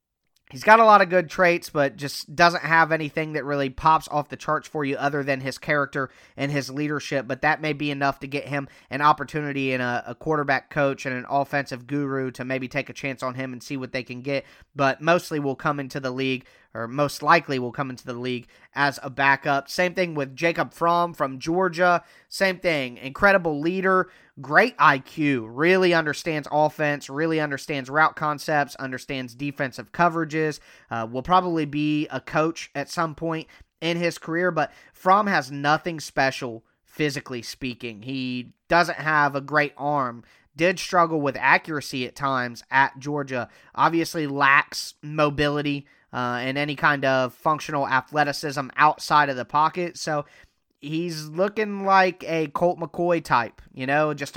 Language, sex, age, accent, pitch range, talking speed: English, male, 30-49, American, 135-160 Hz, 175 wpm